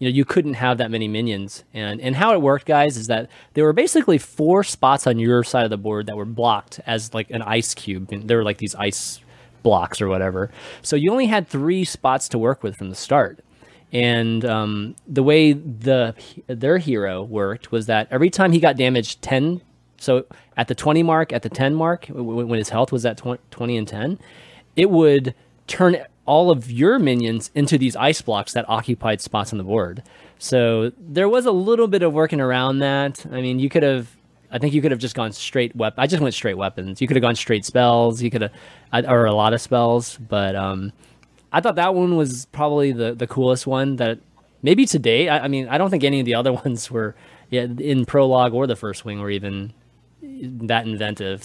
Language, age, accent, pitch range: English, 30-49, American, 110-140 Hz